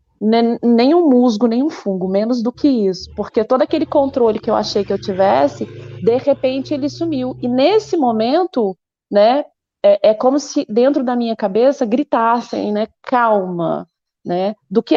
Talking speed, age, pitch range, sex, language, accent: 165 wpm, 30-49, 205-270 Hz, female, Portuguese, Brazilian